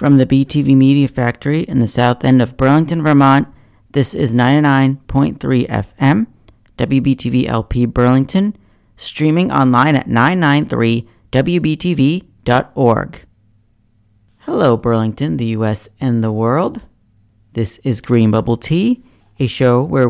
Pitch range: 115-145 Hz